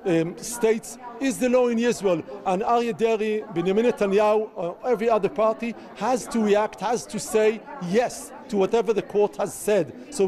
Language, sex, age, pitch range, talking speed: Arabic, male, 50-69, 120-200 Hz, 165 wpm